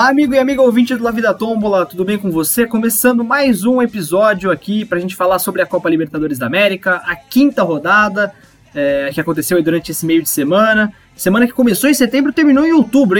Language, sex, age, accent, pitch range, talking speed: Portuguese, male, 20-39, Brazilian, 165-235 Hz, 225 wpm